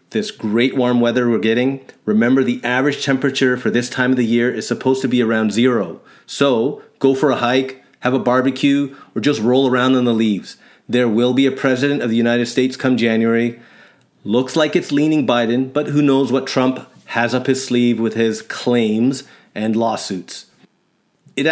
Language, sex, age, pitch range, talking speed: English, male, 30-49, 115-135 Hz, 190 wpm